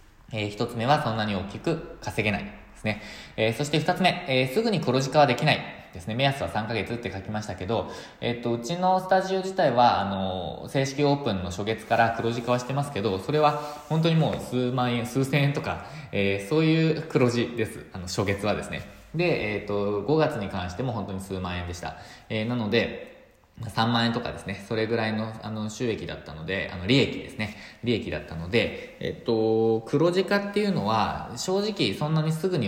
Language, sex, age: Japanese, male, 20-39